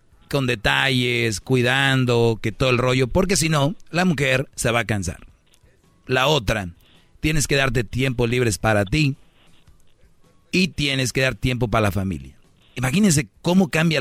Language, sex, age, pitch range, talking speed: Spanish, male, 40-59, 115-150 Hz, 155 wpm